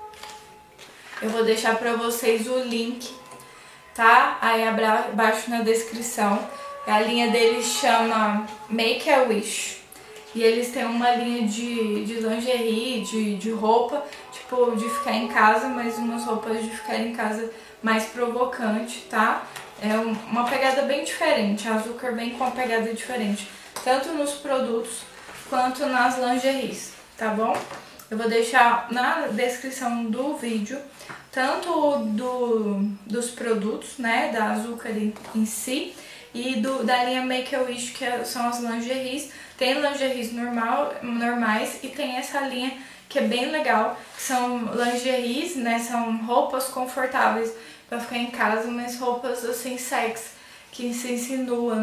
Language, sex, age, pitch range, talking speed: Portuguese, female, 10-29, 225-255 Hz, 135 wpm